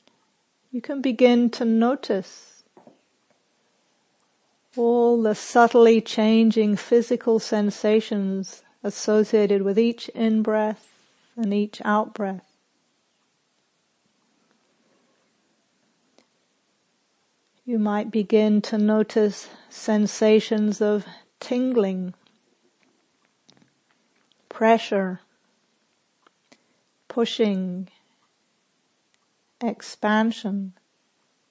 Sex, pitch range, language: female, 205-230 Hz, English